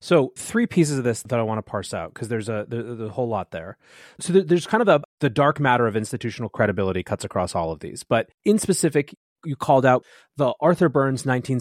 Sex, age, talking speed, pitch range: male, 30-49, 230 wpm, 110-145 Hz